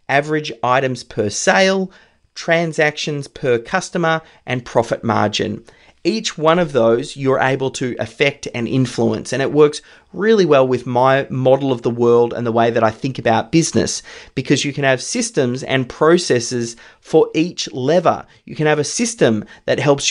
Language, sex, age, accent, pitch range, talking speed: English, male, 30-49, Australian, 120-150 Hz, 165 wpm